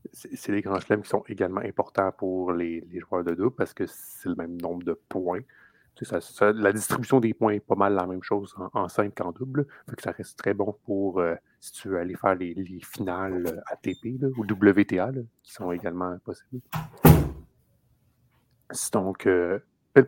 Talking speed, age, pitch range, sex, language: 205 wpm, 30-49, 90-110 Hz, male, French